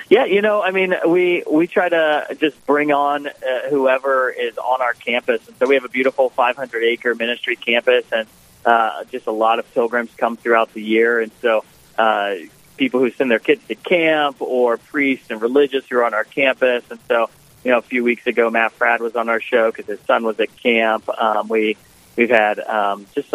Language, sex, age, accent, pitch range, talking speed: English, male, 30-49, American, 115-145 Hz, 220 wpm